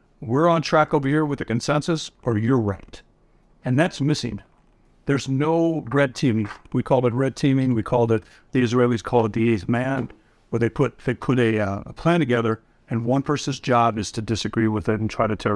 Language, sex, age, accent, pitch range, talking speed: English, male, 60-79, American, 115-150 Hz, 210 wpm